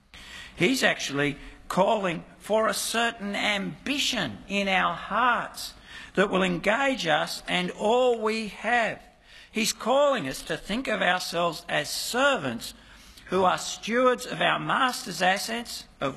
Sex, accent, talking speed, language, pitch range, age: male, Australian, 130 wpm, English, 175-240 Hz, 60-79